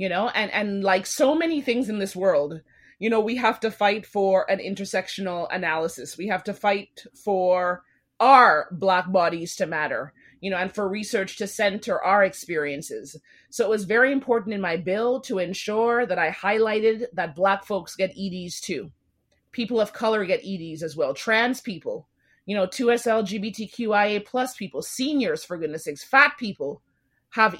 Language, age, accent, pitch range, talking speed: English, 30-49, American, 185-235 Hz, 175 wpm